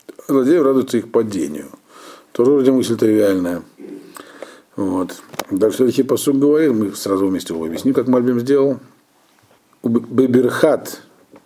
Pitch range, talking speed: 105-135 Hz, 115 wpm